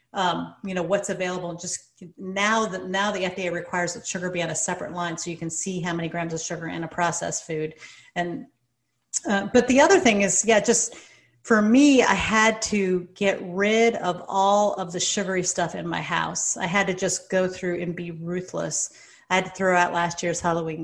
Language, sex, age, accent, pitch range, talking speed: English, female, 40-59, American, 175-205 Hz, 215 wpm